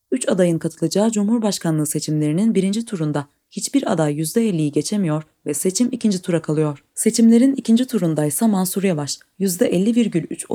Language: Turkish